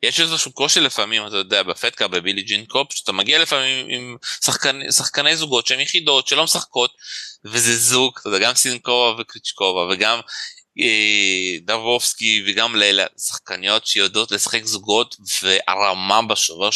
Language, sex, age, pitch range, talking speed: Hebrew, male, 20-39, 110-145 Hz, 135 wpm